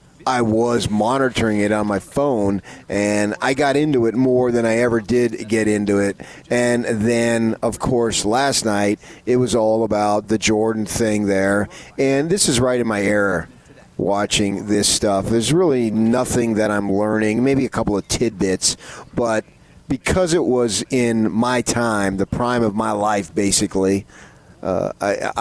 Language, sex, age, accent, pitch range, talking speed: English, male, 40-59, American, 105-120 Hz, 165 wpm